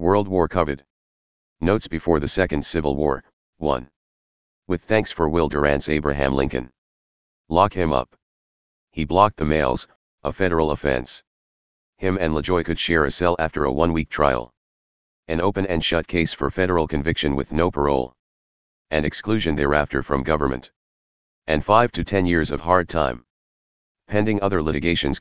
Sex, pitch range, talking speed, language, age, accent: male, 70-85 Hz, 155 wpm, English, 40-59, American